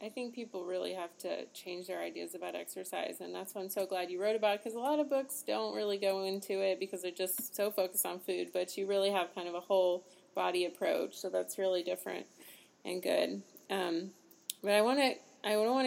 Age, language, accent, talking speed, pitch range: 30-49, English, American, 230 wpm, 190-235 Hz